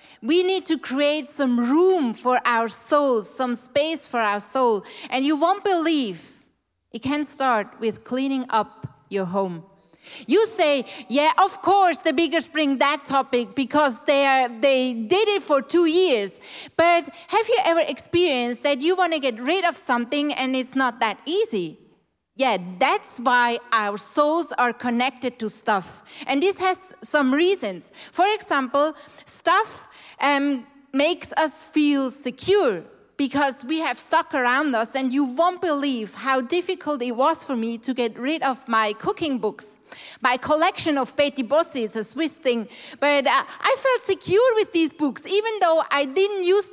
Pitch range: 245-335 Hz